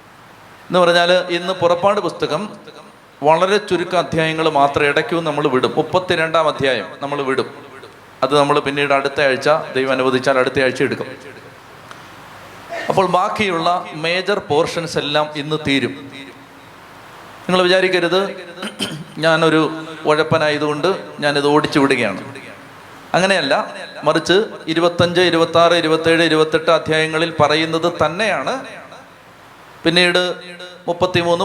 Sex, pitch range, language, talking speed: male, 155-185 Hz, Malayalam, 95 wpm